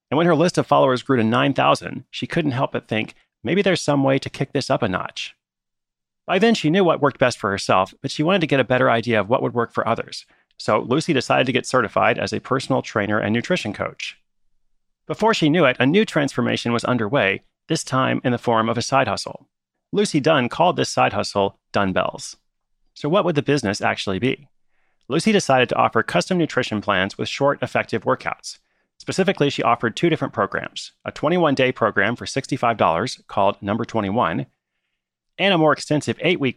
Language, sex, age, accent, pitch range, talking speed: English, male, 30-49, American, 110-150 Hz, 200 wpm